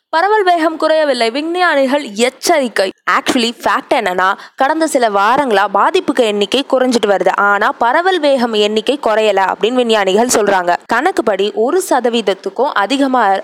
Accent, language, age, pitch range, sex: native, Tamil, 20-39, 210-275 Hz, female